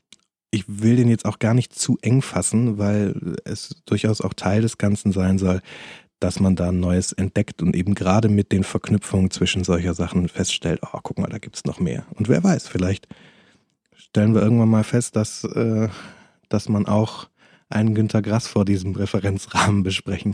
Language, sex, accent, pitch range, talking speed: German, male, German, 95-115 Hz, 190 wpm